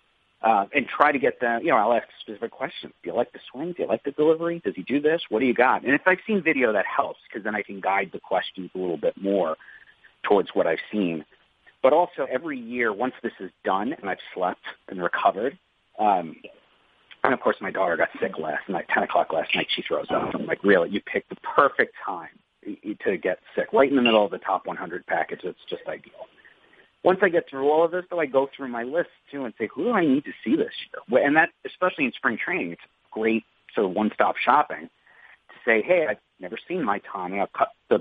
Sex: male